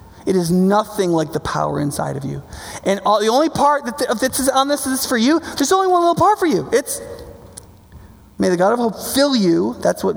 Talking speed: 220 wpm